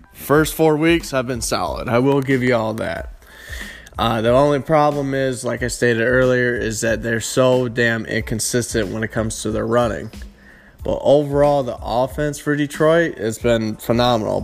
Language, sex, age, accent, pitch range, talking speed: English, male, 20-39, American, 115-135 Hz, 175 wpm